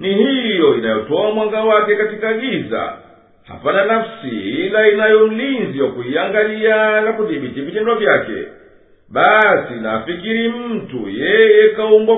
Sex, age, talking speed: male, 50-69, 100 wpm